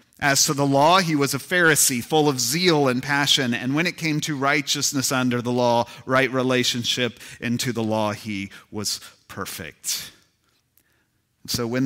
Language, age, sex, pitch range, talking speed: English, 40-59, male, 115-145 Hz, 160 wpm